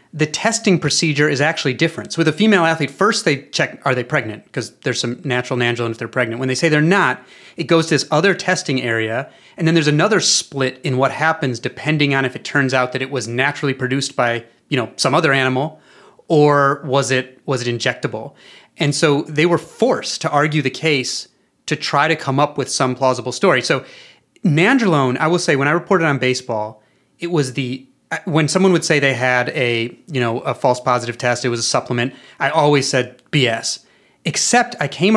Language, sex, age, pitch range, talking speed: English, male, 30-49, 130-165 Hz, 210 wpm